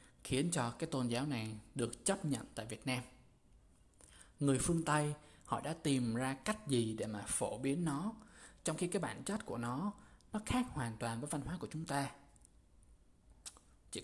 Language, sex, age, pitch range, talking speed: Vietnamese, male, 20-39, 115-160 Hz, 190 wpm